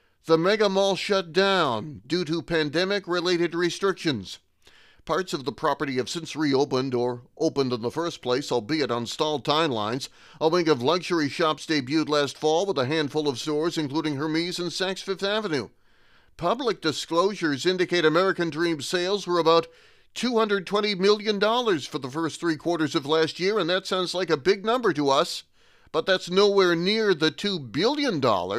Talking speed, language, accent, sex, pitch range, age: 165 wpm, English, American, male, 155-185 Hz, 40-59